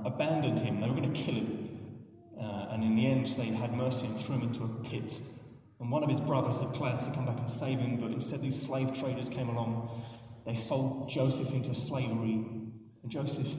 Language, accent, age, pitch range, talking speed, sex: English, British, 30-49, 120-150 Hz, 215 wpm, male